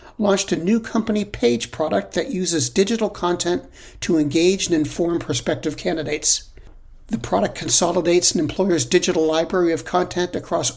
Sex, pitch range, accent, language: male, 125-175 Hz, American, English